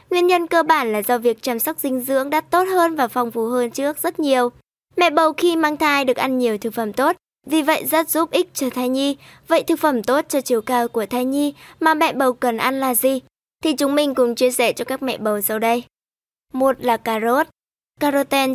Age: 20-39